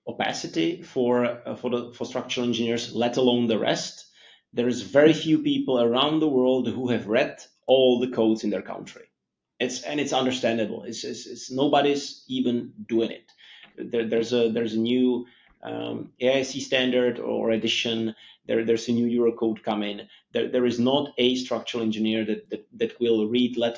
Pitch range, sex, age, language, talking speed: 115-130 Hz, male, 30-49, English, 175 wpm